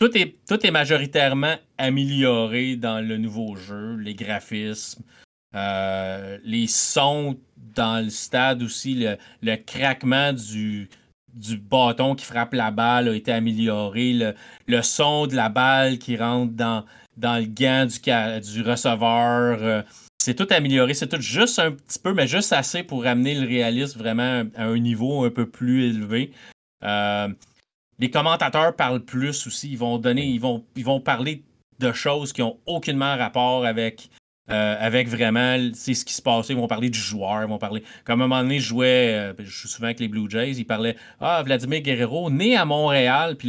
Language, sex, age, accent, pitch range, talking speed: French, male, 30-49, Canadian, 115-135 Hz, 180 wpm